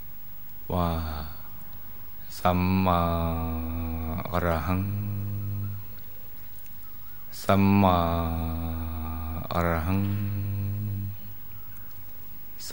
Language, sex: Thai, male